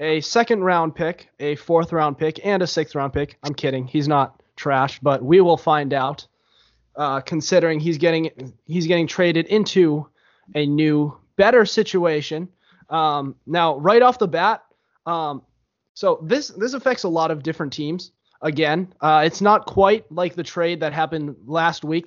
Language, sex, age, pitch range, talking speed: English, male, 20-39, 145-180 Hz, 170 wpm